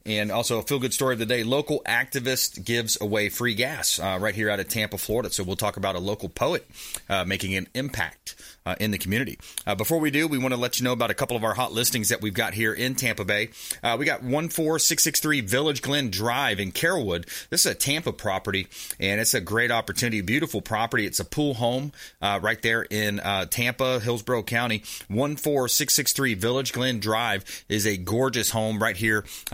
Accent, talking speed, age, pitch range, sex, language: American, 215 wpm, 30-49, 105-130 Hz, male, English